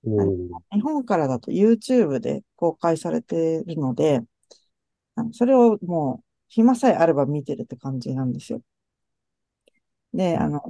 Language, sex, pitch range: Japanese, female, 150-205 Hz